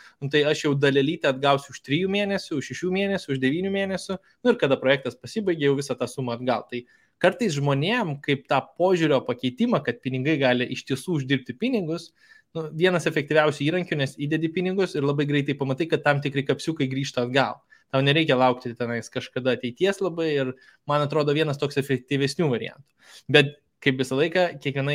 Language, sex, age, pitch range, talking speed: English, male, 20-39, 135-175 Hz, 180 wpm